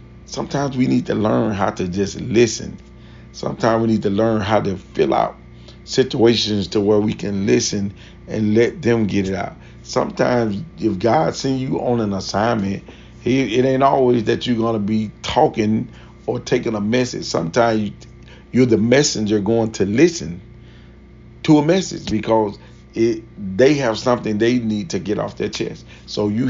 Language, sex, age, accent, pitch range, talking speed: English, male, 40-59, American, 105-115 Hz, 170 wpm